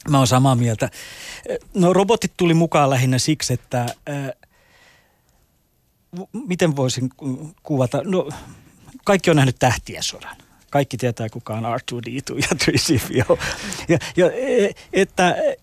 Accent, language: native, Finnish